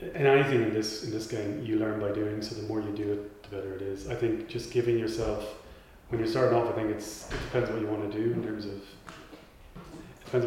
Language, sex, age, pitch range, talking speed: English, male, 30-49, 110-120 Hz, 260 wpm